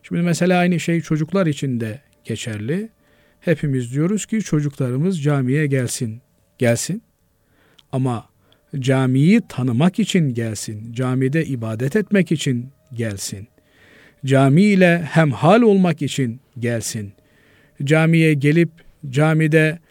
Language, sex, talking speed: Turkish, male, 100 wpm